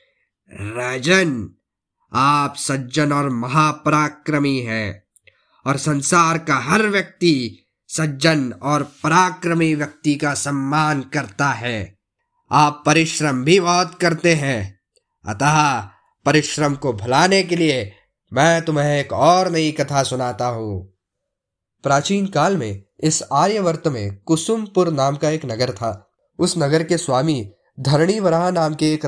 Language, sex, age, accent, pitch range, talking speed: Hindi, male, 20-39, native, 135-180 Hz, 120 wpm